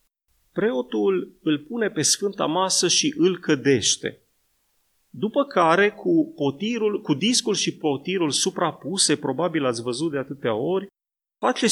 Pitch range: 135-190 Hz